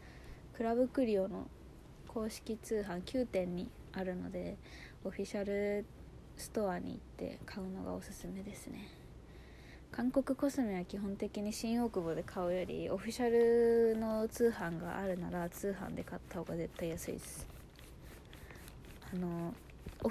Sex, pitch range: female, 185-245 Hz